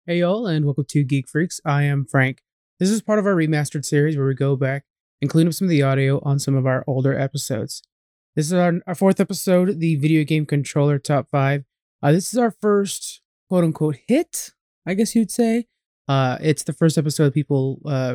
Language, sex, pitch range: English, male, 145-210 Hz